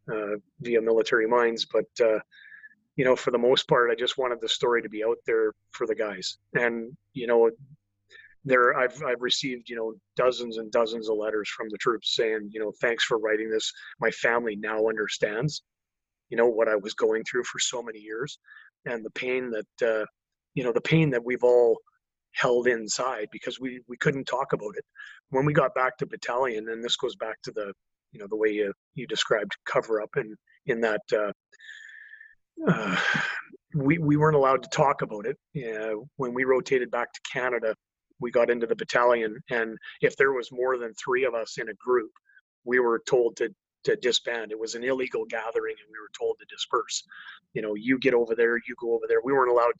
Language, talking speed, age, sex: English, 205 wpm, 30-49, male